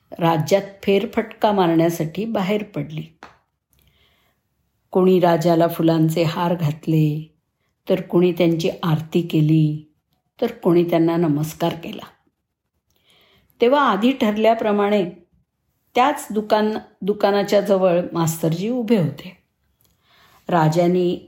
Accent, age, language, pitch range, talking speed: native, 50-69, Marathi, 165-215 Hz, 85 wpm